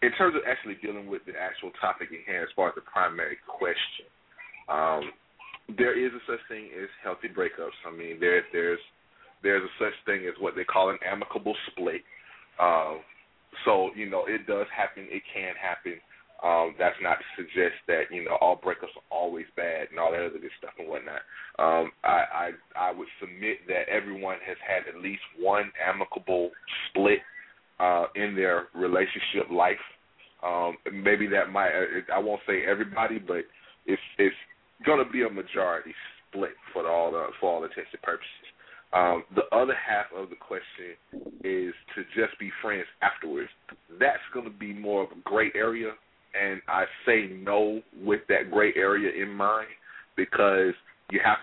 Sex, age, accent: male, 30-49, American